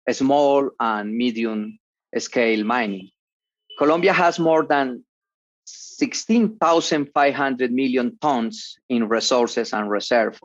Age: 40-59